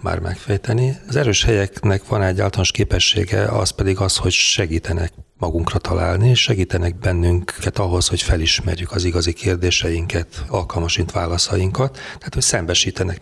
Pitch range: 85-105 Hz